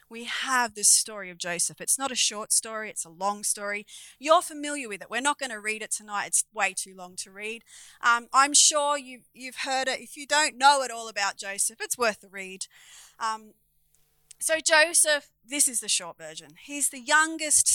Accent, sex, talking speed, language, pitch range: Australian, female, 205 wpm, English, 200-285 Hz